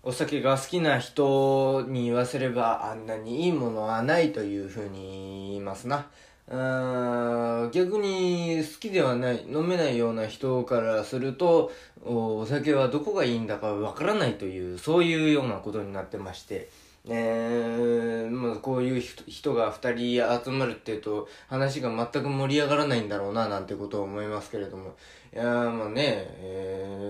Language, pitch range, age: Japanese, 105-145 Hz, 20-39